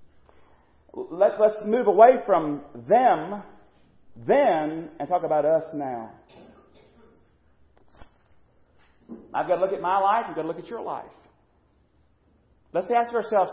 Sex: male